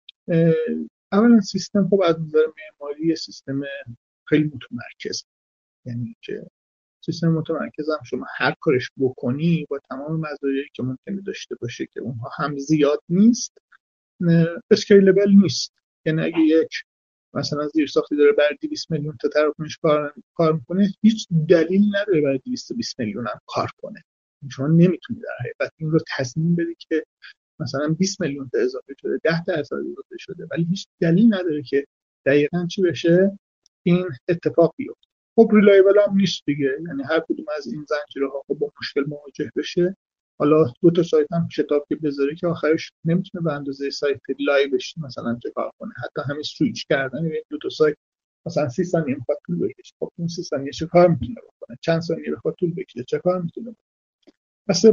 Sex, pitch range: male, 145-195 Hz